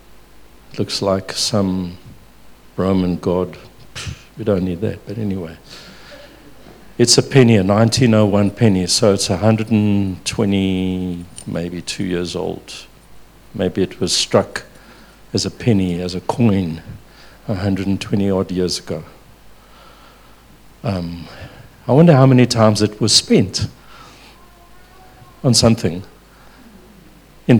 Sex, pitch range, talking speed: male, 95-115 Hz, 120 wpm